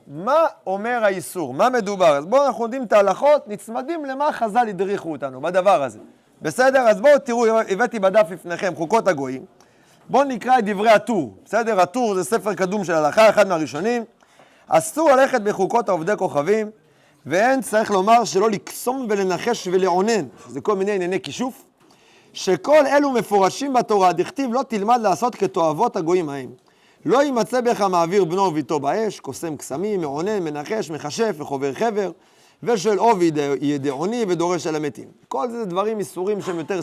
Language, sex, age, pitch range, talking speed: Hebrew, male, 30-49, 185-255 Hz, 160 wpm